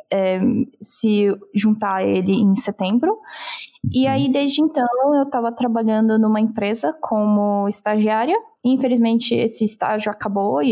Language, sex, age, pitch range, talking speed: Portuguese, female, 10-29, 205-255 Hz, 125 wpm